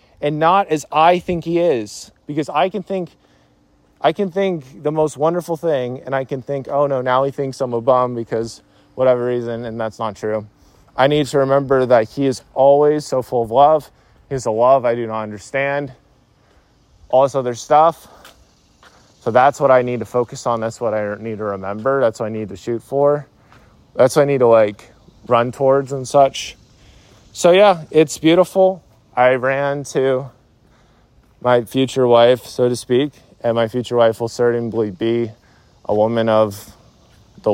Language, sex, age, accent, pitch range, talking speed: English, male, 20-39, American, 110-140 Hz, 185 wpm